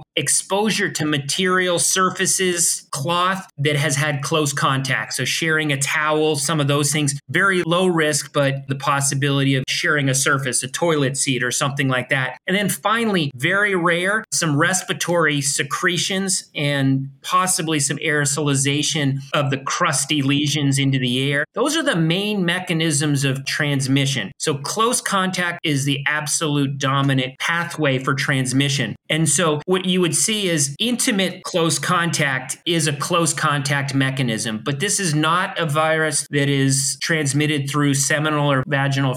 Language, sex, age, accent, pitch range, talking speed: English, male, 30-49, American, 140-170 Hz, 150 wpm